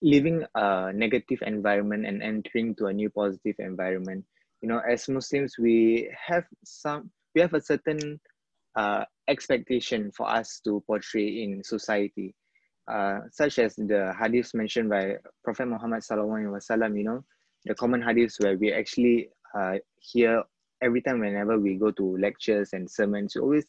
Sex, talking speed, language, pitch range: male, 155 wpm, English, 105-135 Hz